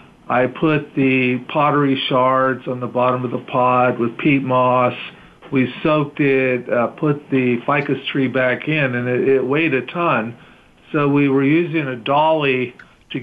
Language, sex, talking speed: English, male, 170 wpm